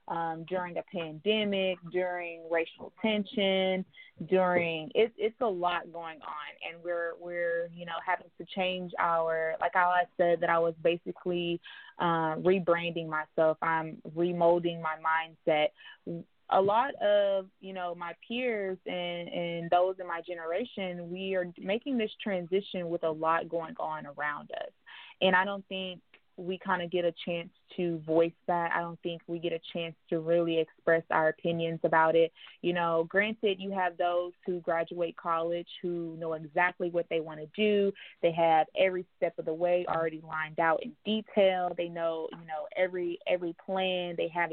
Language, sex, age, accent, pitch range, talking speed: English, female, 20-39, American, 170-190 Hz, 170 wpm